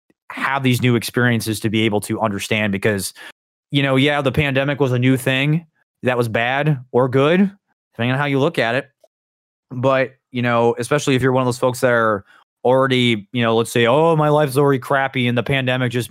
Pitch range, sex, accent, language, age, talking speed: 110-130 Hz, male, American, English, 20-39, 210 wpm